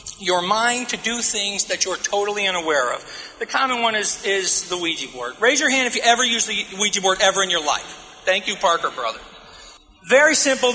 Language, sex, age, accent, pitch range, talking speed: English, male, 40-59, American, 185-245 Hz, 210 wpm